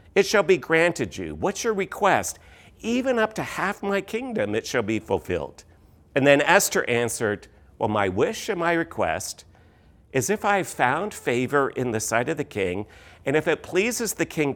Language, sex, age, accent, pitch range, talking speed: English, male, 50-69, American, 115-155 Hz, 185 wpm